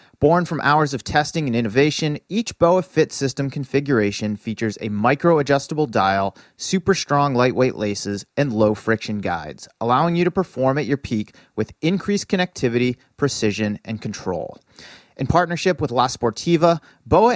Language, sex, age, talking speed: English, male, 30-49, 140 wpm